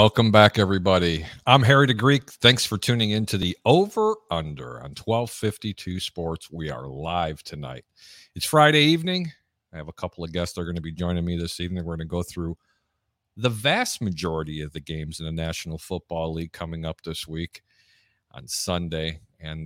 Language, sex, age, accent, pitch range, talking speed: English, male, 50-69, American, 85-115 Hz, 190 wpm